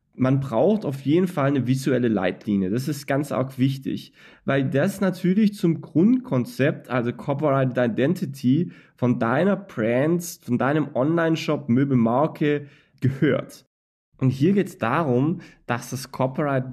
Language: German